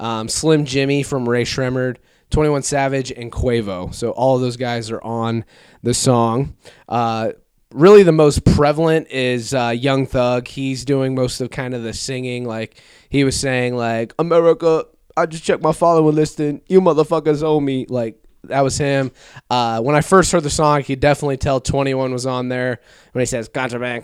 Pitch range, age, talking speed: 125-150 Hz, 20-39, 190 wpm